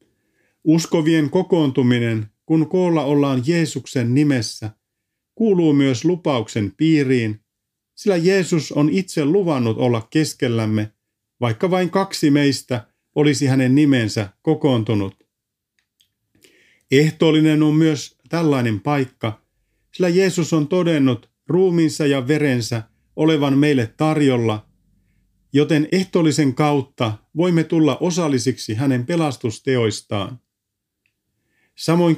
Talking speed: 95 wpm